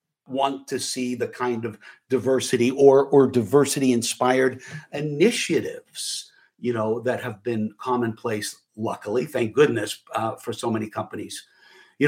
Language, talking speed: English, 130 wpm